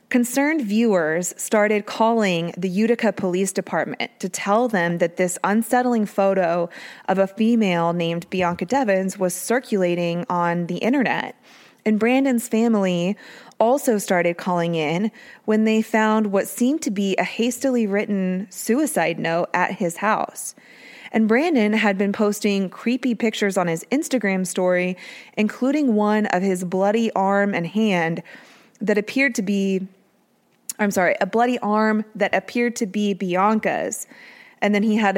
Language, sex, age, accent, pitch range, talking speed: English, female, 20-39, American, 180-225 Hz, 145 wpm